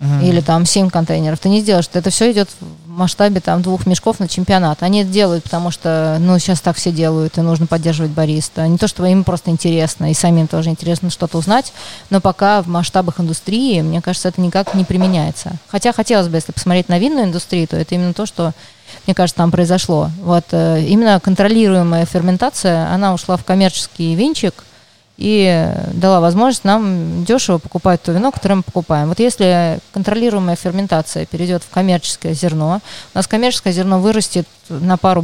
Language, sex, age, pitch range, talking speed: Russian, female, 20-39, 165-190 Hz, 180 wpm